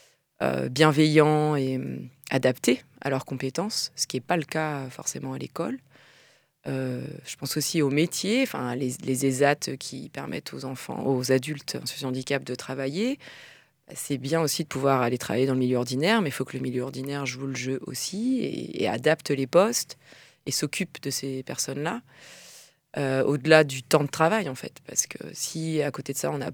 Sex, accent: female, French